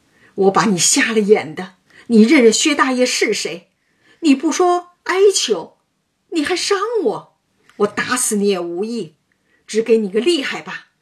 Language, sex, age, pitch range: Chinese, female, 50-69, 195-265 Hz